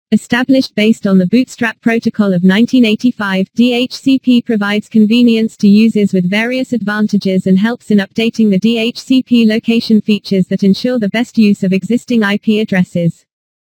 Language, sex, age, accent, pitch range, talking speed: English, female, 40-59, British, 200-240 Hz, 145 wpm